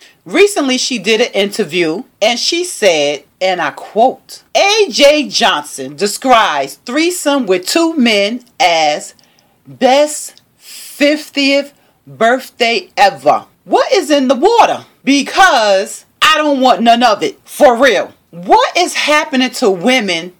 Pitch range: 240-360 Hz